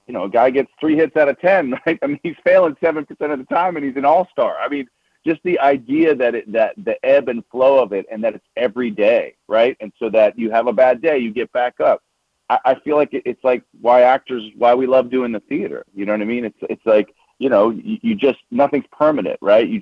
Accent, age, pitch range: American, 40-59, 115-160 Hz